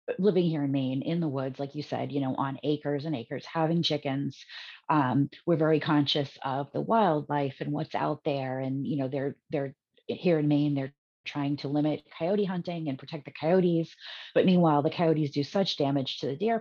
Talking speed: 205 wpm